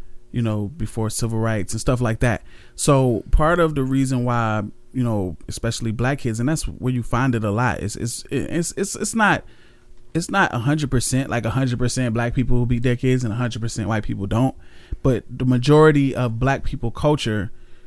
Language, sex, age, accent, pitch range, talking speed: English, male, 20-39, American, 115-130 Hz, 210 wpm